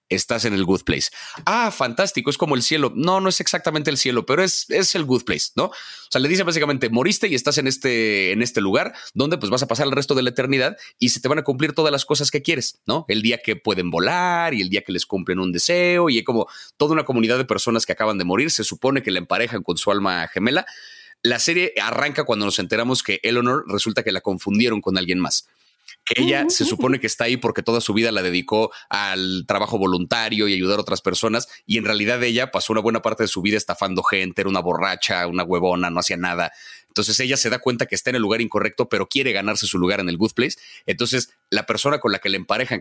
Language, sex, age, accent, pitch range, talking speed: Spanish, male, 30-49, Mexican, 100-135 Hz, 250 wpm